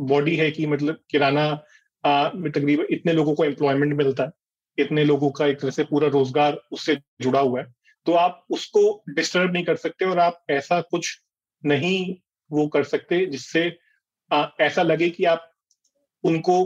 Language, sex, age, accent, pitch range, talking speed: Hindi, male, 30-49, native, 140-175 Hz, 165 wpm